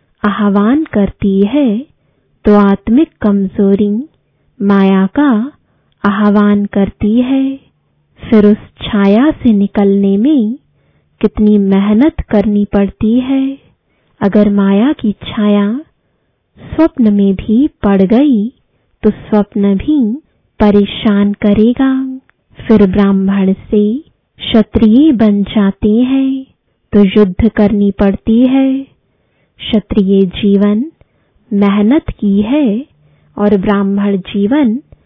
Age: 20-39